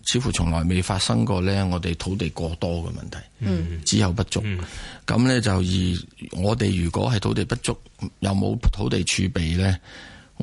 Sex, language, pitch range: male, Chinese, 90-110 Hz